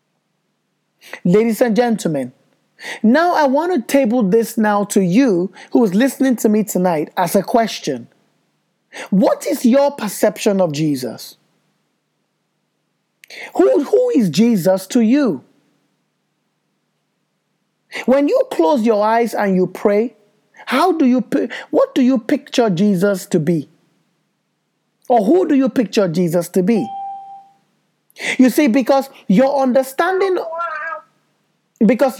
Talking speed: 125 wpm